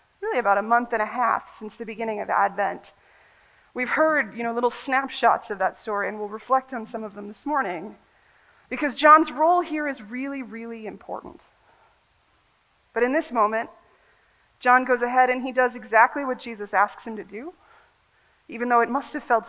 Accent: American